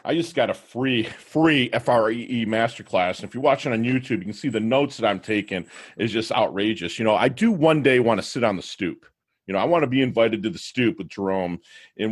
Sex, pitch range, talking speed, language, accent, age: male, 110-150 Hz, 250 wpm, English, American, 40-59